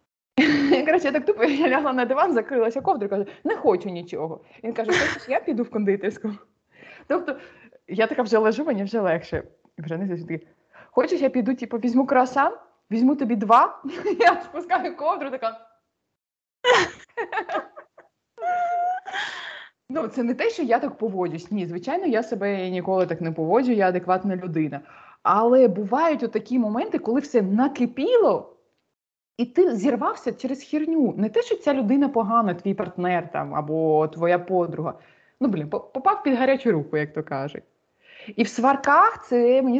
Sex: female